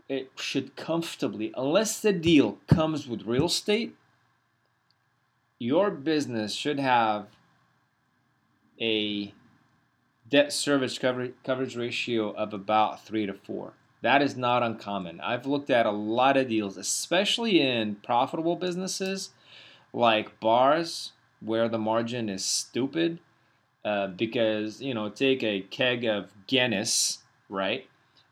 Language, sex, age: English, male, 20-39